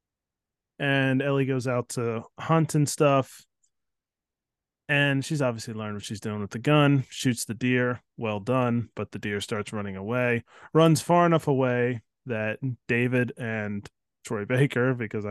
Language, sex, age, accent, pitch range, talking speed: English, male, 20-39, American, 115-150 Hz, 155 wpm